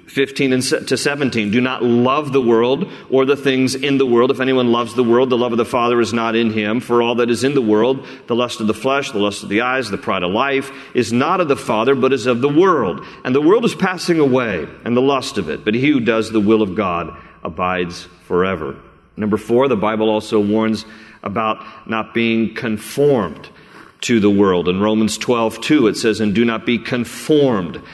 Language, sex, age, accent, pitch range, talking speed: English, male, 40-59, American, 110-135 Hz, 225 wpm